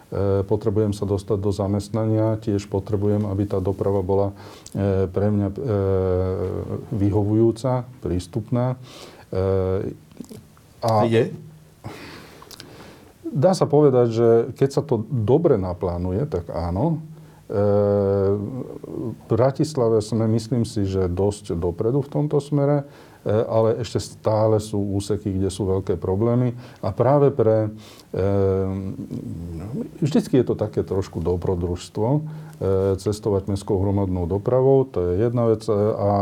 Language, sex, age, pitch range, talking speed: Slovak, male, 40-59, 100-120 Hz, 110 wpm